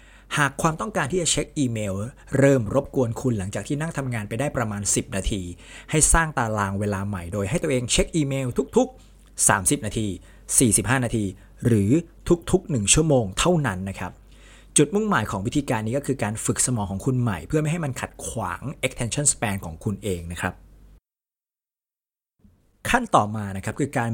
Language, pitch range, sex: Thai, 100-135 Hz, male